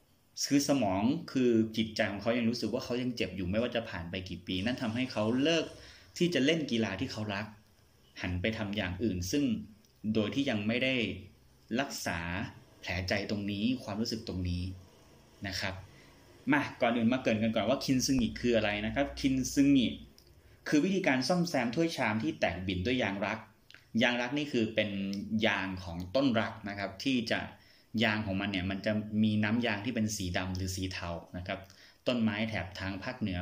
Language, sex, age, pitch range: Thai, male, 30-49, 95-115 Hz